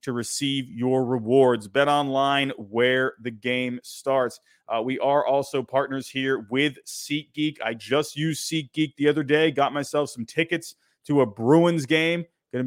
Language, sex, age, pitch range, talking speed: English, male, 30-49, 130-150 Hz, 160 wpm